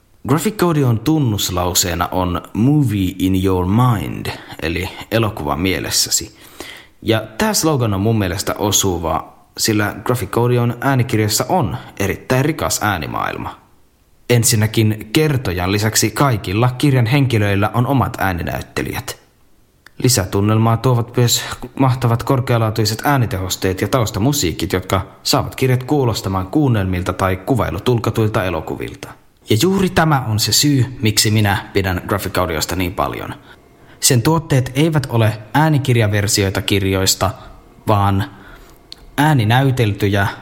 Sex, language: male, Finnish